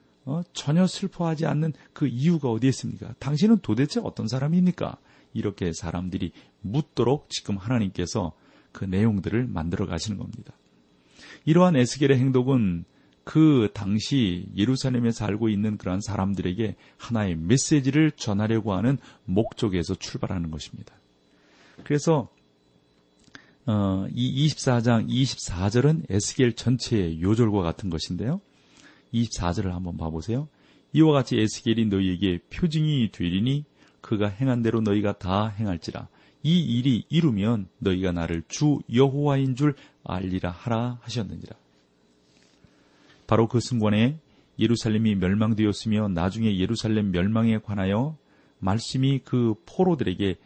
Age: 40-59